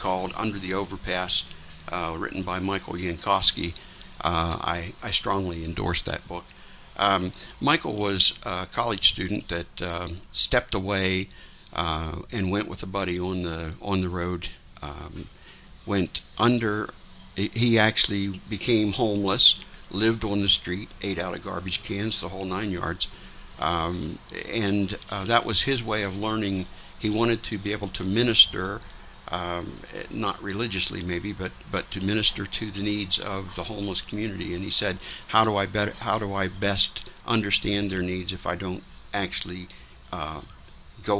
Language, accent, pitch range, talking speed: English, American, 85-100 Hz, 155 wpm